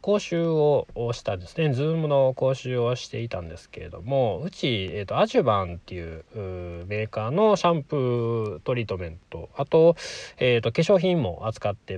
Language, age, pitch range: Japanese, 20-39, 100-150 Hz